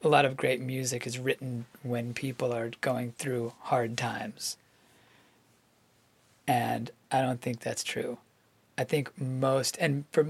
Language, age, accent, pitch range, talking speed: English, 40-59, American, 115-135 Hz, 145 wpm